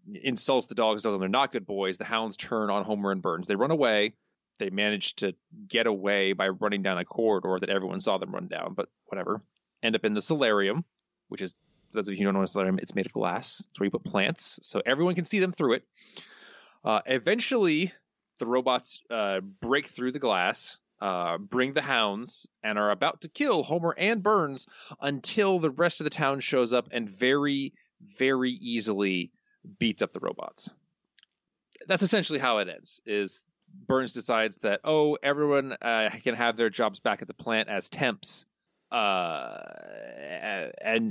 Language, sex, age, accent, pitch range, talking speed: English, male, 20-39, American, 110-155 Hz, 190 wpm